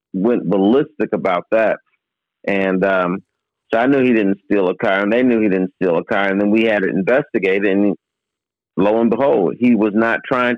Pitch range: 105-125 Hz